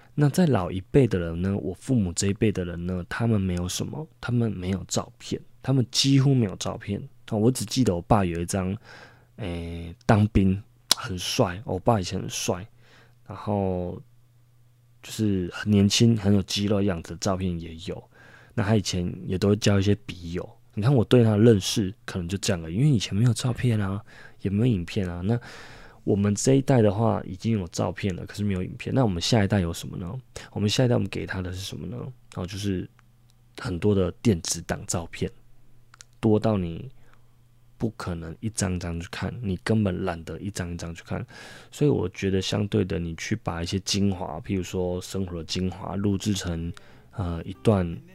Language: Chinese